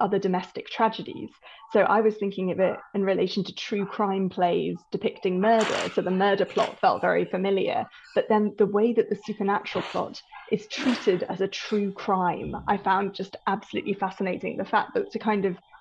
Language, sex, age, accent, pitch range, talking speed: English, female, 20-39, British, 190-215 Hz, 185 wpm